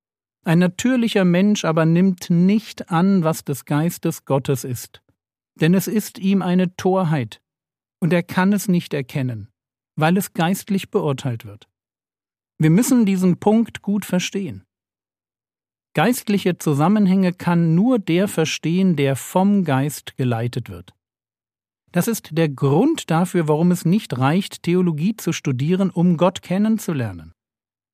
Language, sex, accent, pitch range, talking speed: German, male, German, 135-190 Hz, 130 wpm